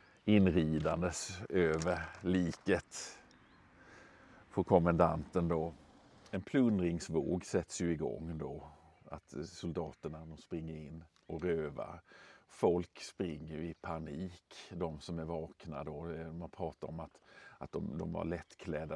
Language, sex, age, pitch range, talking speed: Swedish, male, 50-69, 80-90 Hz, 115 wpm